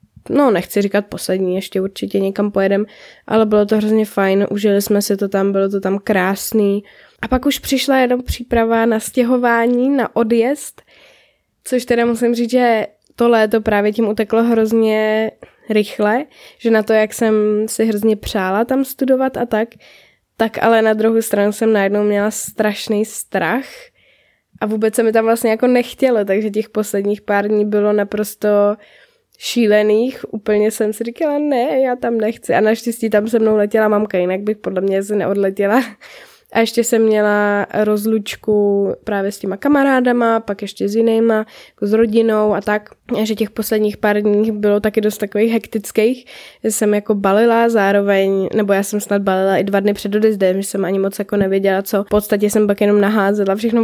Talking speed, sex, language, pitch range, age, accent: 180 wpm, female, Czech, 205-225 Hz, 10-29, native